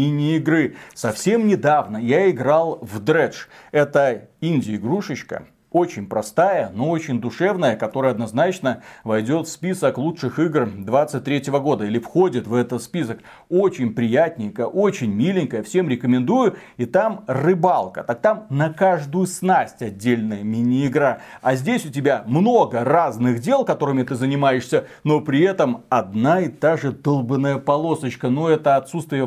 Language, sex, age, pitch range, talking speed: Russian, male, 30-49, 125-165 Hz, 140 wpm